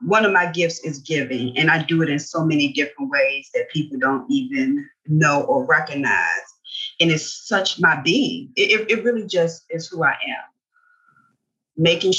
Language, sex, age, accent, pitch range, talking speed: English, female, 30-49, American, 155-235 Hz, 175 wpm